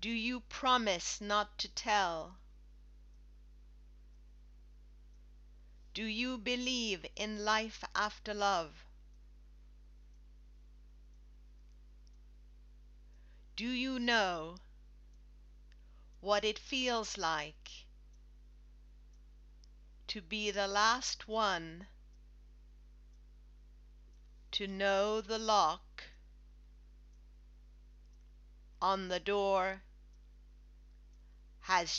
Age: 40-59